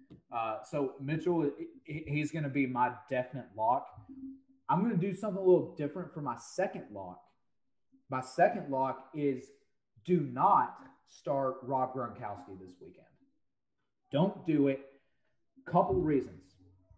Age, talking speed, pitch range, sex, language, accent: 30-49, 140 wpm, 130-165 Hz, male, English, American